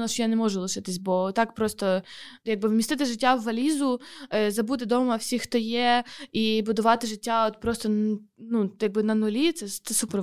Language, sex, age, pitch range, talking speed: Ukrainian, female, 20-39, 220-270 Hz, 170 wpm